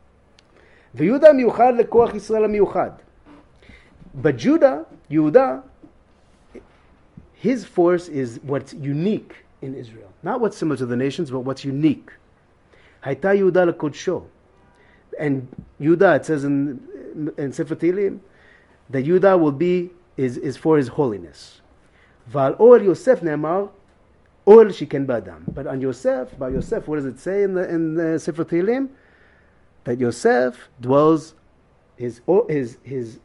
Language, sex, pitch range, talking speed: English, male, 125-185 Hz, 130 wpm